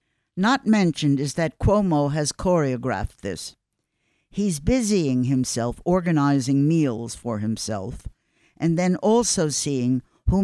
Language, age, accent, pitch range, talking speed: English, 60-79, American, 130-180 Hz, 115 wpm